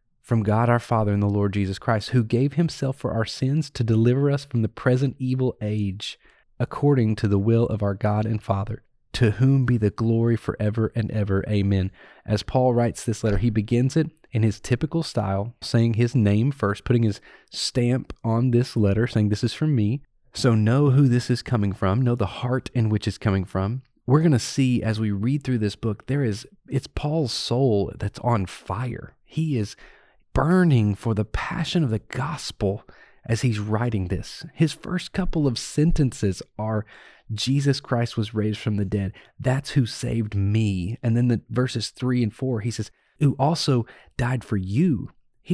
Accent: American